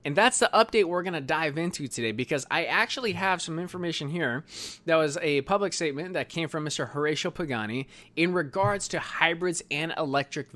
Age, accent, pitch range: 20-39, American, 125-170 Hz